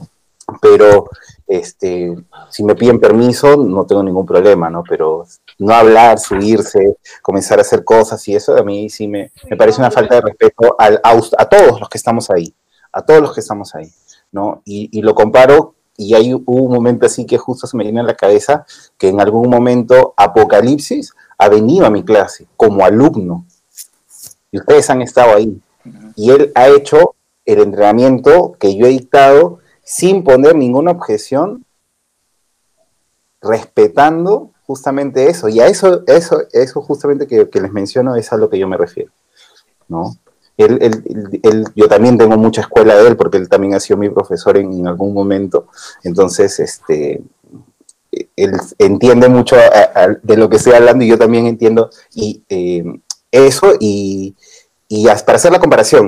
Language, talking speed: Spanish, 175 wpm